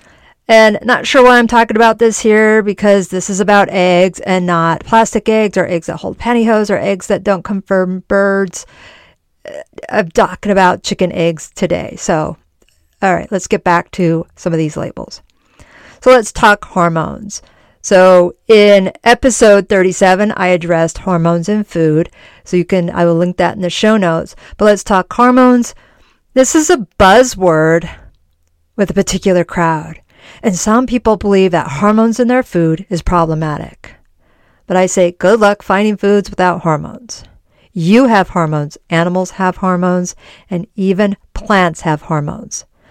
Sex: female